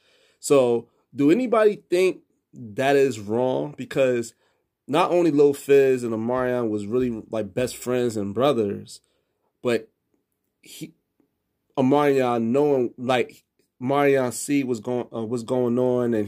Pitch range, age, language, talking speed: 120-155 Hz, 30-49, English, 125 wpm